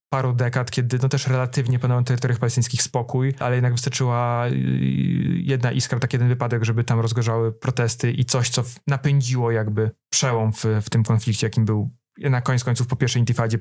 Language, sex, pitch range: Polish, male, 115-130 Hz